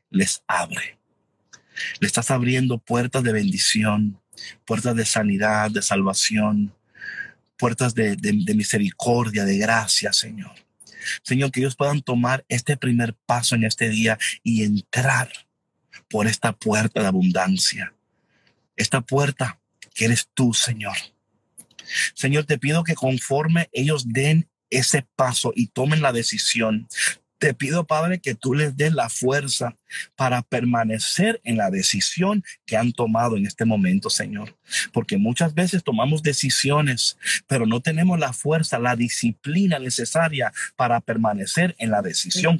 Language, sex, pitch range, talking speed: Spanish, male, 115-150 Hz, 135 wpm